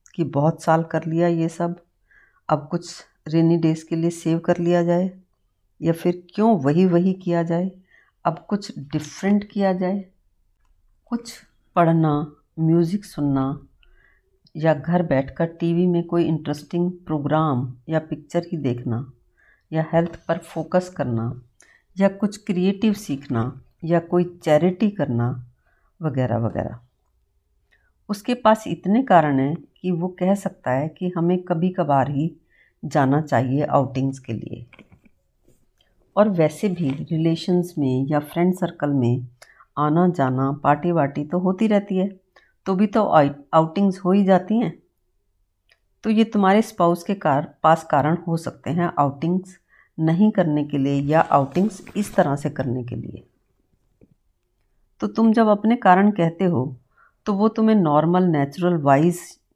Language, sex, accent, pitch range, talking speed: Hindi, female, native, 140-185 Hz, 145 wpm